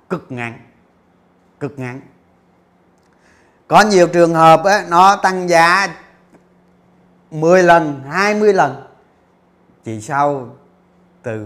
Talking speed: 100 wpm